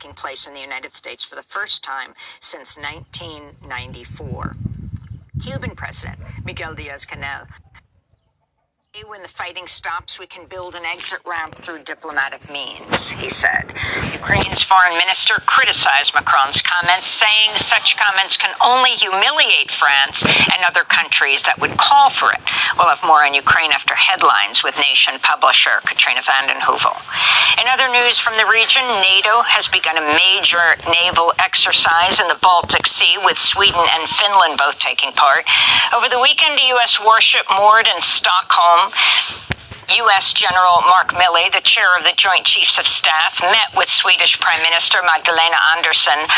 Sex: female